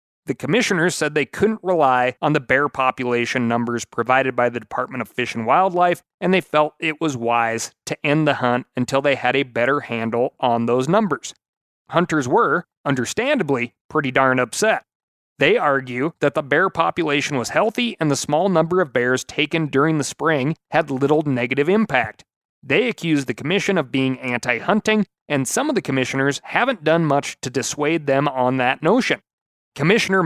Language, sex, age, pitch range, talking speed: English, male, 30-49, 130-165 Hz, 175 wpm